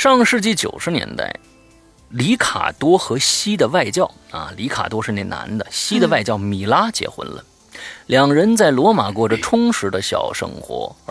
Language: Chinese